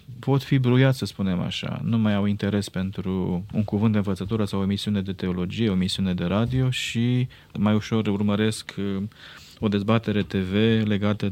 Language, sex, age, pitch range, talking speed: Romanian, male, 20-39, 100-125 Hz, 170 wpm